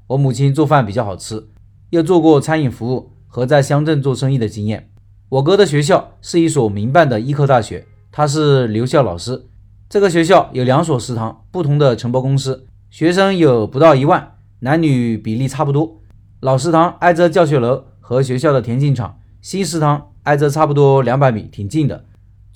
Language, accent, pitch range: Chinese, native, 110-155 Hz